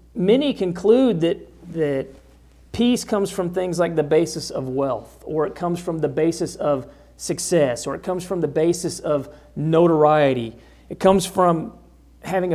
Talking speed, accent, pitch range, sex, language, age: 160 wpm, American, 125-185 Hz, male, English, 40-59